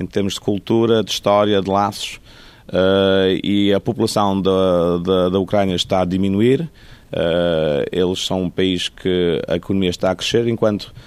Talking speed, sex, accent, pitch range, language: 170 wpm, male, Brazilian, 95-130 Hz, Portuguese